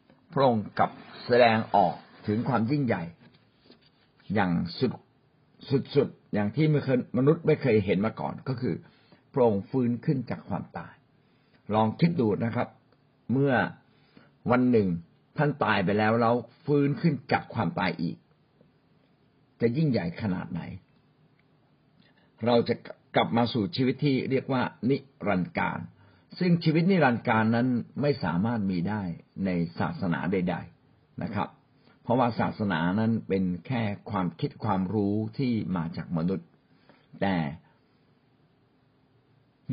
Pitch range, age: 110-140 Hz, 60-79